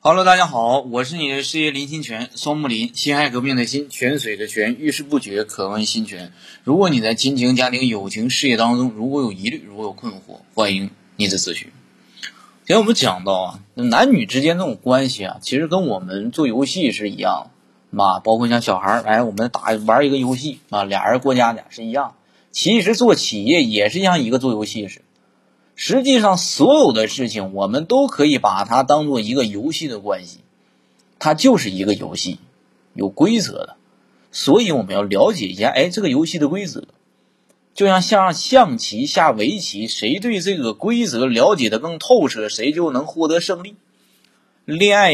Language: Chinese